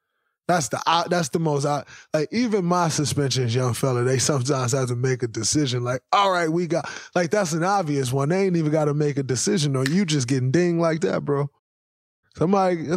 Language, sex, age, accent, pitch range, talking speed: English, male, 20-39, American, 120-155 Hz, 210 wpm